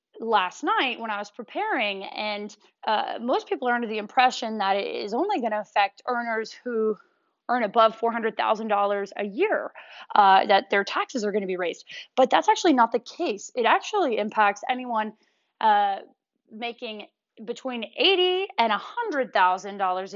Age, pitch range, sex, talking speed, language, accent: 20-39, 205-295 Hz, female, 160 wpm, English, American